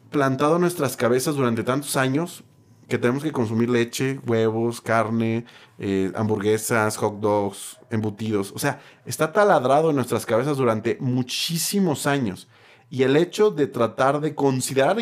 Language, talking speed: Spanish, 145 wpm